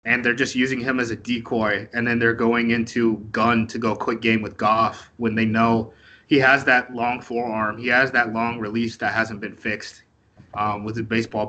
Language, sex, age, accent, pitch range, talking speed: English, male, 20-39, American, 115-130 Hz, 215 wpm